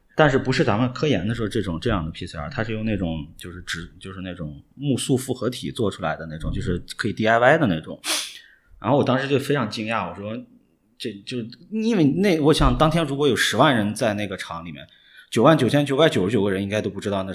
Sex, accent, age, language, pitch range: male, native, 30-49, Chinese, 90-125 Hz